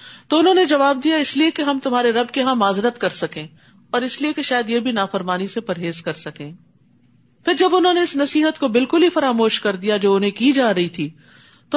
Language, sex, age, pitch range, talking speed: Urdu, female, 50-69, 195-290 Hz, 240 wpm